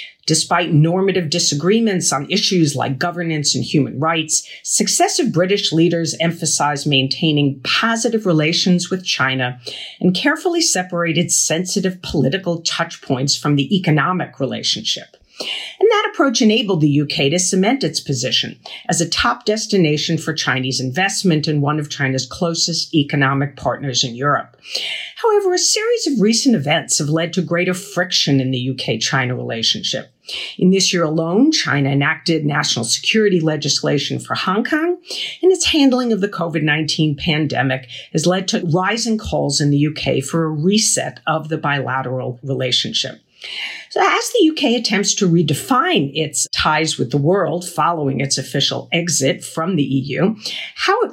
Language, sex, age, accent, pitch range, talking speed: English, female, 50-69, American, 145-200 Hz, 150 wpm